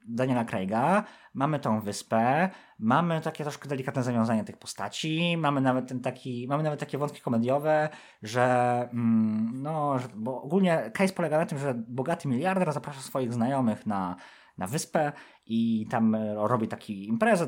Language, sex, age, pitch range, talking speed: Polish, male, 20-39, 120-160 Hz, 155 wpm